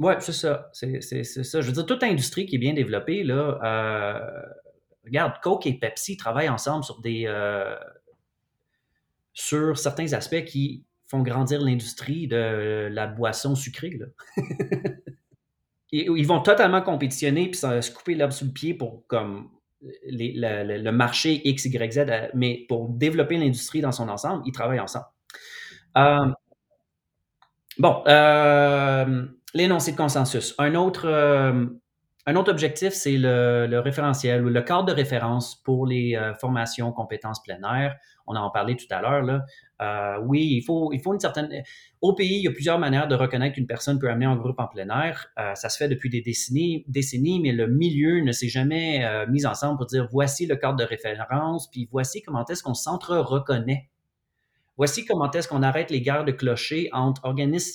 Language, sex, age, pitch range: French, male, 30-49, 120-150 Hz